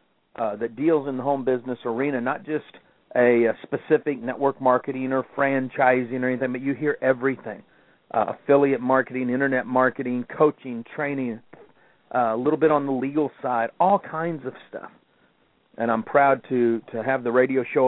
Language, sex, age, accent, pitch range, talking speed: English, male, 50-69, American, 125-160 Hz, 170 wpm